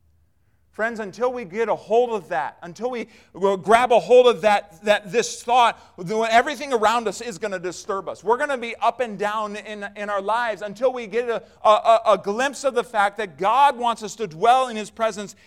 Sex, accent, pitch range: male, American, 175-230 Hz